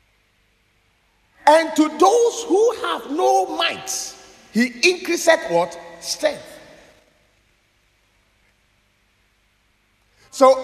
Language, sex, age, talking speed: English, male, 50-69, 70 wpm